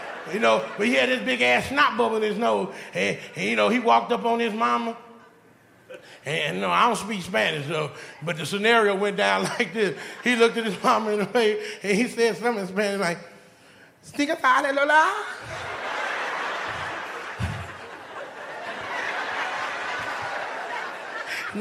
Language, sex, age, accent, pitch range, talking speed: English, male, 30-49, American, 230-345 Hz, 160 wpm